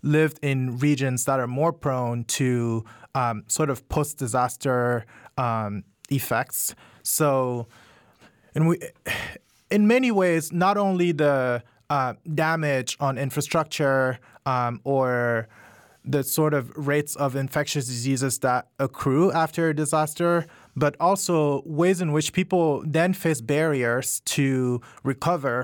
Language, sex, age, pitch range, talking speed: English, male, 20-39, 125-150 Hz, 115 wpm